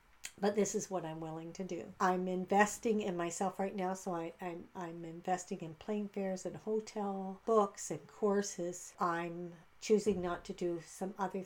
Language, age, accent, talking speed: English, 60-79, American, 180 wpm